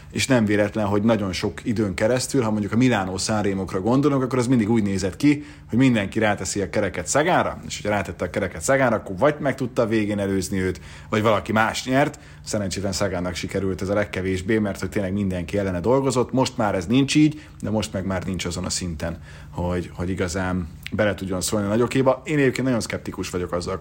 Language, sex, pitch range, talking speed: Hungarian, male, 95-115 Hz, 205 wpm